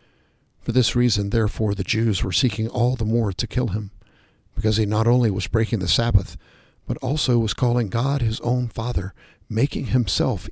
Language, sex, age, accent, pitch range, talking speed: English, male, 50-69, American, 100-120 Hz, 185 wpm